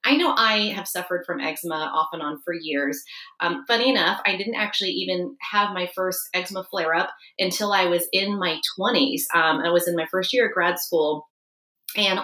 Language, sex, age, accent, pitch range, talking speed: English, female, 30-49, American, 175-220 Hz, 200 wpm